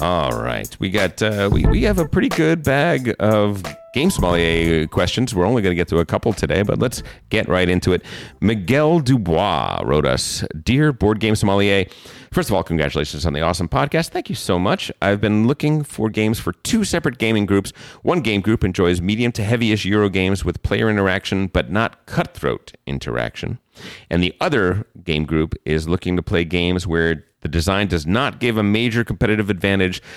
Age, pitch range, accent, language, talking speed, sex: 40-59, 80-110 Hz, American, English, 195 wpm, male